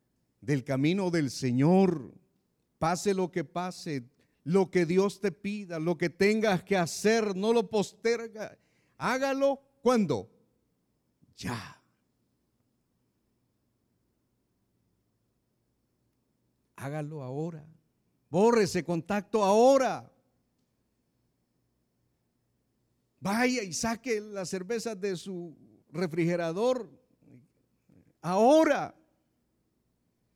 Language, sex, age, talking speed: Spanish, male, 50-69, 75 wpm